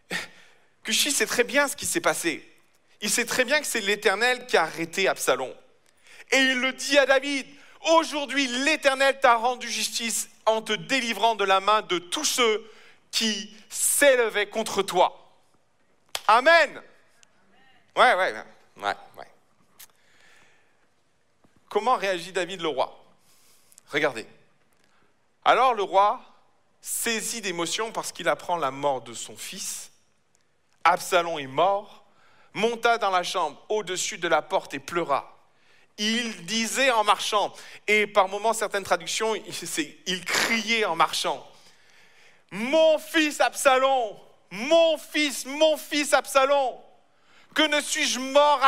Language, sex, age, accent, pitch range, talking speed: French, male, 40-59, French, 190-265 Hz, 130 wpm